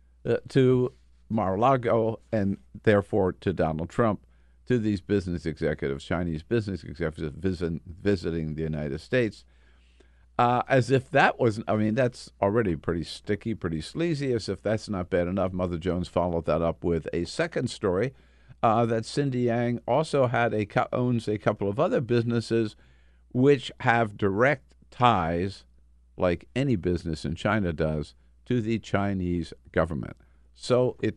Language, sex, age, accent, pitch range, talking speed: English, male, 50-69, American, 80-110 Hz, 150 wpm